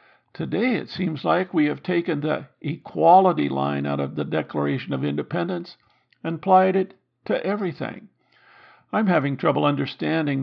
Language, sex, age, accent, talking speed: English, male, 50-69, American, 145 wpm